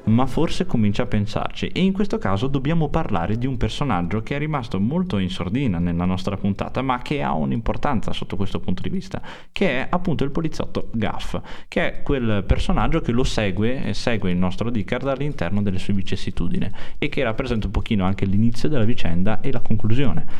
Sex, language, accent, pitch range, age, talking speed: male, Italian, native, 95-130 Hz, 20-39, 195 wpm